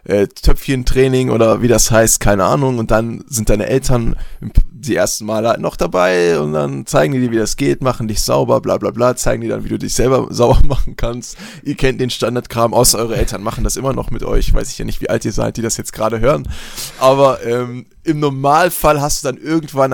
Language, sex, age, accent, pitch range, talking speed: German, male, 20-39, German, 110-140 Hz, 230 wpm